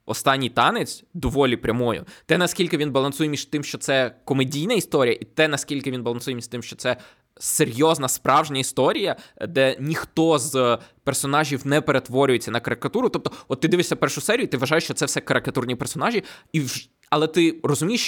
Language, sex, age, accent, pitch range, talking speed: Ukrainian, male, 20-39, native, 125-160 Hz, 175 wpm